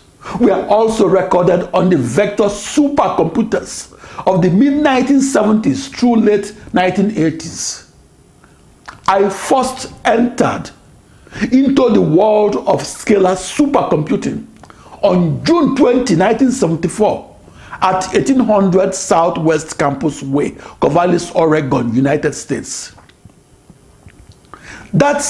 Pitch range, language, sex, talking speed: 185-250 Hz, English, male, 90 wpm